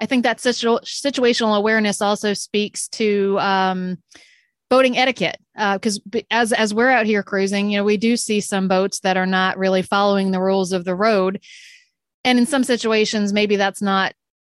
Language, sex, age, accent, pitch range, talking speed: English, female, 30-49, American, 190-225 Hz, 180 wpm